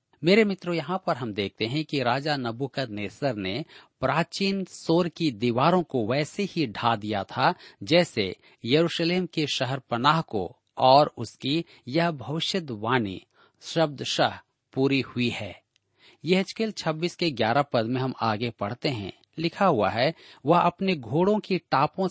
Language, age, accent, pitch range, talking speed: Hindi, 40-59, native, 120-170 Hz, 150 wpm